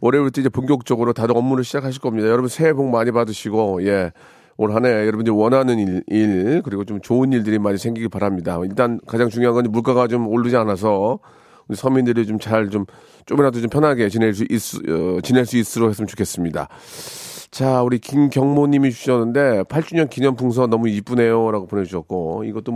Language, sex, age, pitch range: Korean, male, 40-59, 110-140 Hz